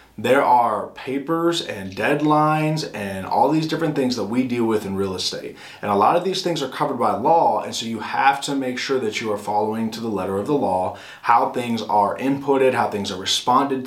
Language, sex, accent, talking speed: English, male, American, 225 wpm